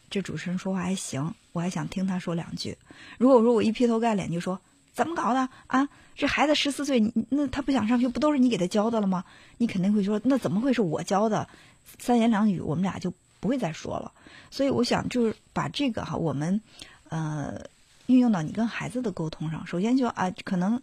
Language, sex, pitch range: Chinese, female, 170-230 Hz